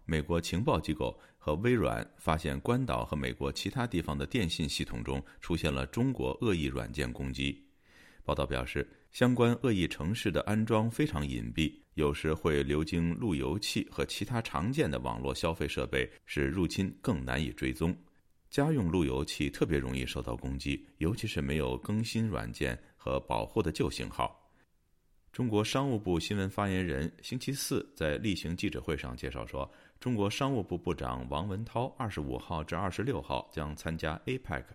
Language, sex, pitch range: Chinese, male, 70-100 Hz